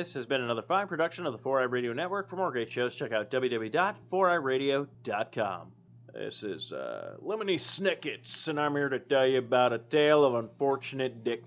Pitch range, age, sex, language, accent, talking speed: 120-170 Hz, 30-49, male, English, American, 185 wpm